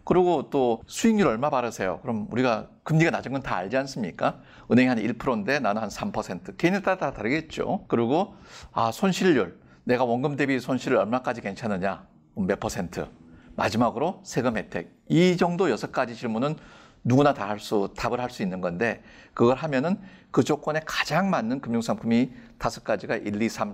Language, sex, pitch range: Korean, male, 125-175 Hz